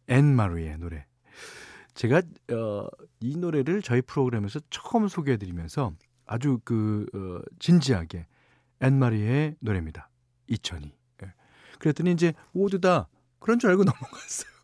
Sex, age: male, 40-59